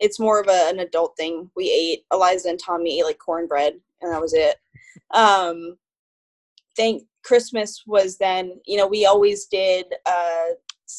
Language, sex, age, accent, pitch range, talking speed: English, female, 10-29, American, 180-235 Hz, 170 wpm